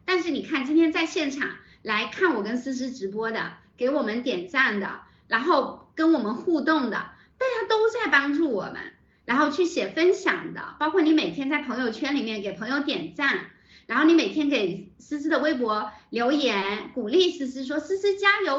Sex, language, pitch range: female, Chinese, 245-360 Hz